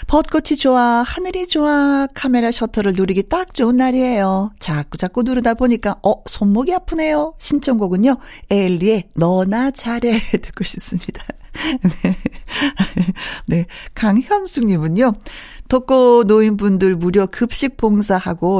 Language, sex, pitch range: Korean, female, 185-255 Hz